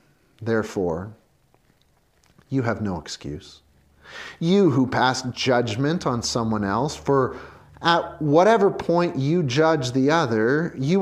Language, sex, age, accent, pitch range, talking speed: English, male, 30-49, American, 120-200 Hz, 115 wpm